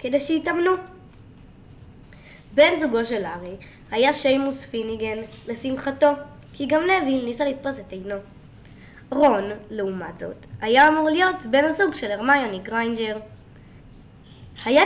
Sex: female